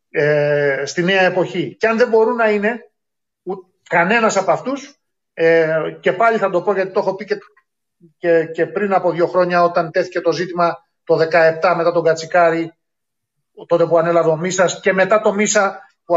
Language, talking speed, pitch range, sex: Greek, 180 wpm, 170-230 Hz, male